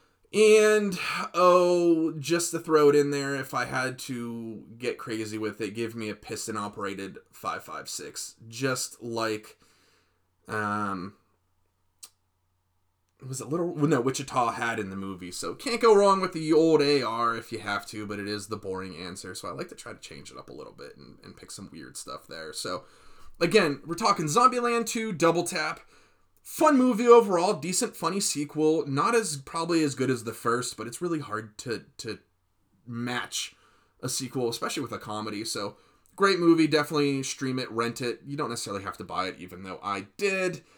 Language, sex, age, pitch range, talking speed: English, male, 20-39, 105-150 Hz, 185 wpm